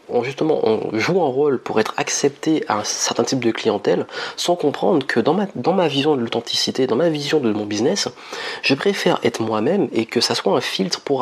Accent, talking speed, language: French, 220 wpm, French